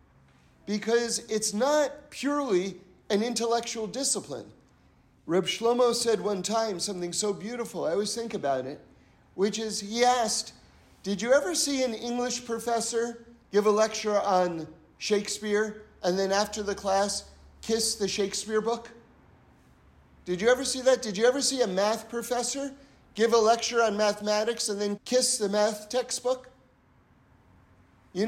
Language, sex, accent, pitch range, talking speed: English, male, American, 200-245 Hz, 145 wpm